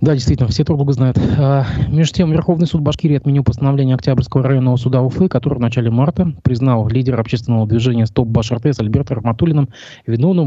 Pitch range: 110-140 Hz